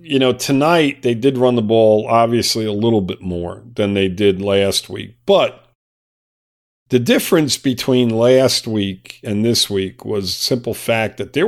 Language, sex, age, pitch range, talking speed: English, male, 50-69, 100-130 Hz, 165 wpm